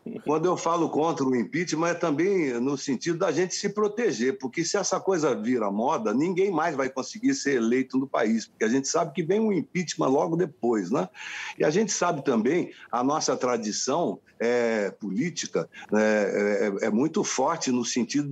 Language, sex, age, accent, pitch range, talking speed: Portuguese, male, 60-79, Brazilian, 125-190 Hz, 185 wpm